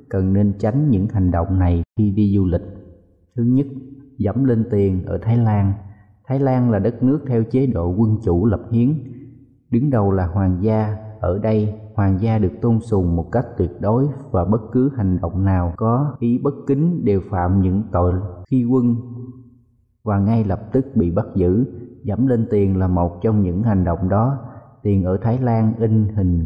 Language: Vietnamese